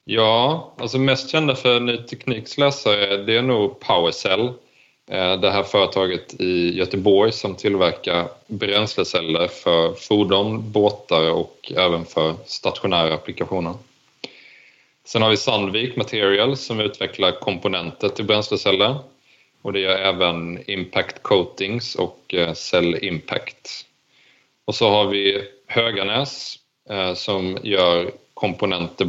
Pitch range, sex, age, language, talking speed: 95-120 Hz, male, 30-49, Swedish, 110 wpm